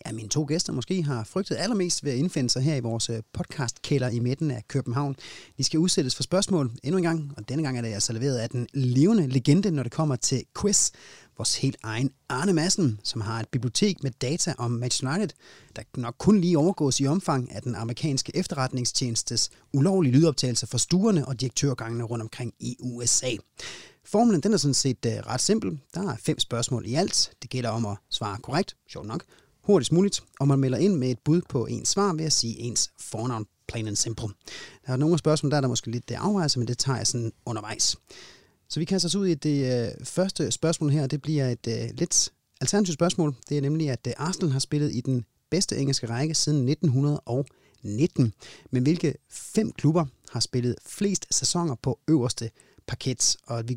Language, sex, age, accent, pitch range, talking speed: Danish, male, 30-49, native, 120-160 Hz, 200 wpm